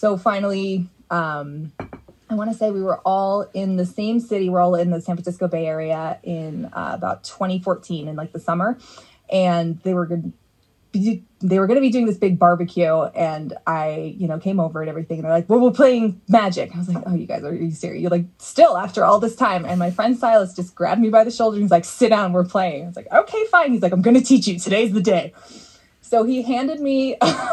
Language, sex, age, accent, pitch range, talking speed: English, female, 20-39, American, 170-215 Hz, 230 wpm